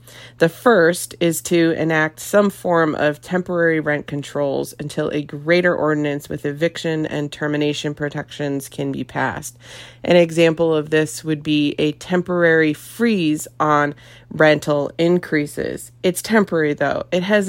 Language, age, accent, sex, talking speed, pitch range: English, 30-49, American, female, 135 wpm, 145-170 Hz